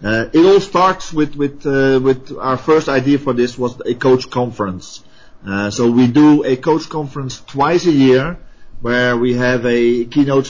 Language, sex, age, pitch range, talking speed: English, male, 30-49, 115-135 Hz, 185 wpm